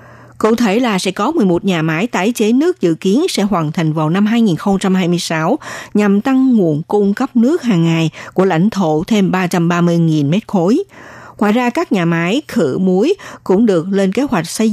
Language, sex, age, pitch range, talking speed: Vietnamese, female, 60-79, 170-225 Hz, 190 wpm